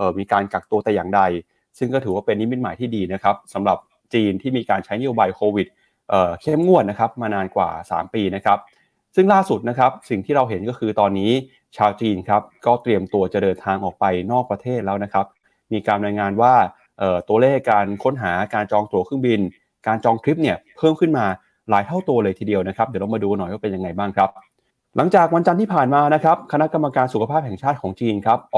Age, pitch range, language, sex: 20-39, 100-130 Hz, Thai, male